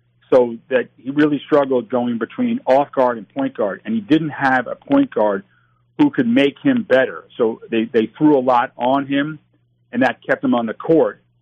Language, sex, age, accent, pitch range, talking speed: English, male, 50-69, American, 115-145 Hz, 200 wpm